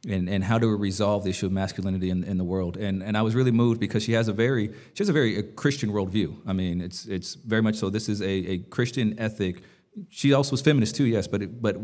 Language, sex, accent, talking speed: English, male, American, 270 wpm